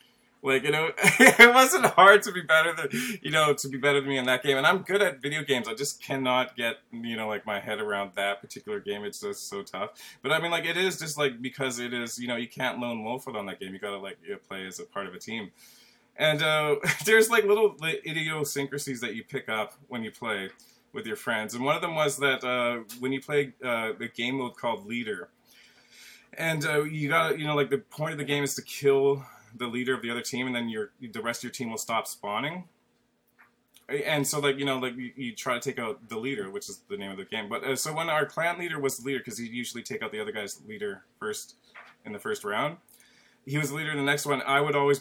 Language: English